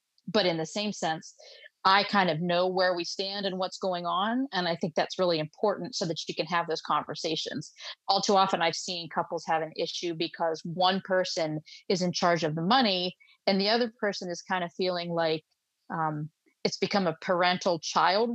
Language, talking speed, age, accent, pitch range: English, 205 wpm, 30-49, American, 165-190 Hz